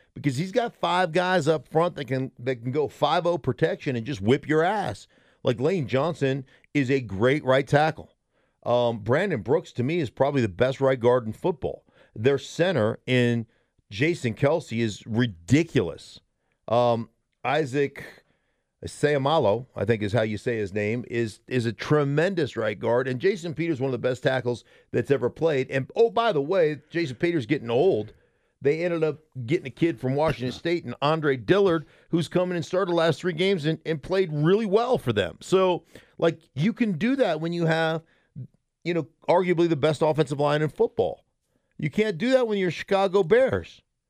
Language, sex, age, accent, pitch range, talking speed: English, male, 50-69, American, 125-175 Hz, 185 wpm